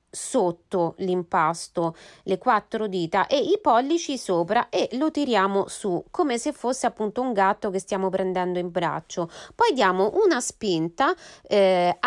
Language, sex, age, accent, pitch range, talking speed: Italian, female, 30-49, native, 185-280 Hz, 145 wpm